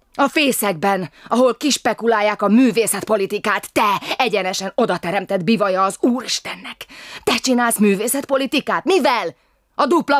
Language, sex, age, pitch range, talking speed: Hungarian, female, 20-39, 175-230 Hz, 105 wpm